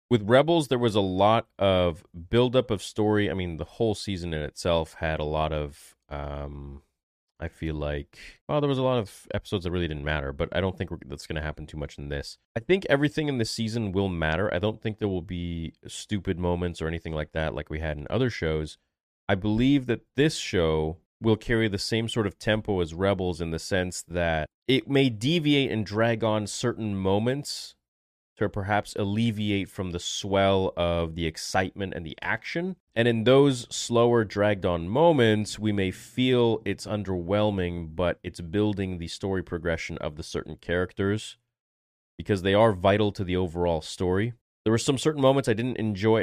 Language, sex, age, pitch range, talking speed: English, male, 30-49, 80-110 Hz, 195 wpm